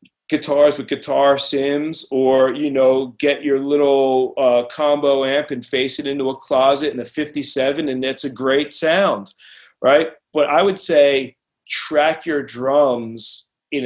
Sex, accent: male, American